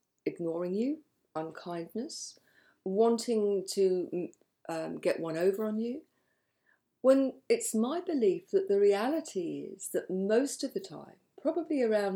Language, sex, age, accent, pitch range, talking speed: English, female, 50-69, British, 180-250 Hz, 130 wpm